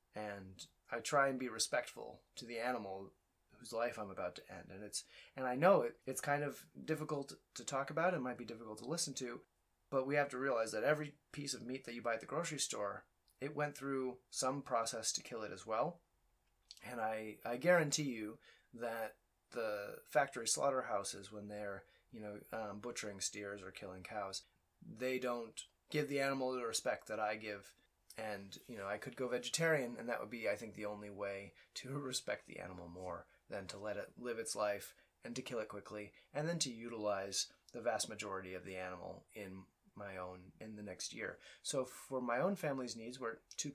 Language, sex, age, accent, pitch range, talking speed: English, male, 30-49, American, 105-135 Hz, 205 wpm